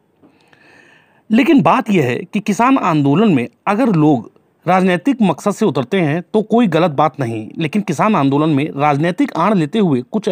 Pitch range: 140-195 Hz